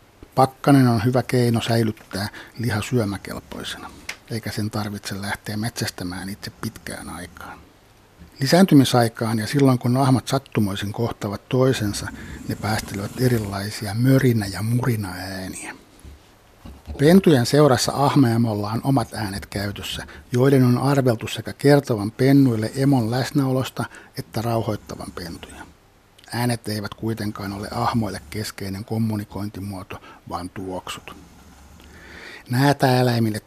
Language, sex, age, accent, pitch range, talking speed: Finnish, male, 60-79, native, 100-125 Hz, 100 wpm